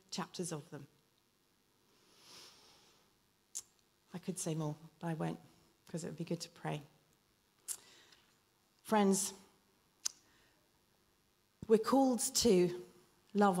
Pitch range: 165-205 Hz